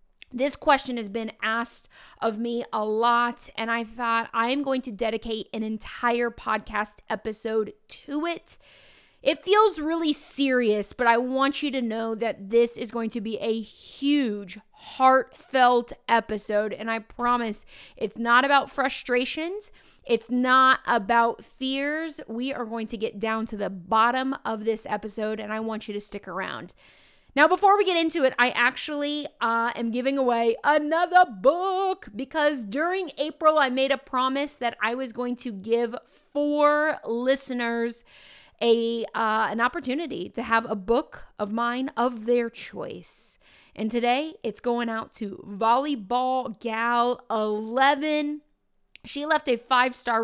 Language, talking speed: English, 150 wpm